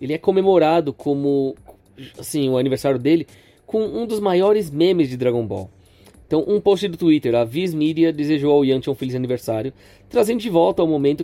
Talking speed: 185 wpm